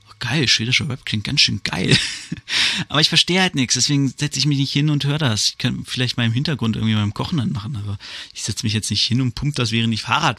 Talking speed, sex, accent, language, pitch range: 260 wpm, male, German, German, 105-140 Hz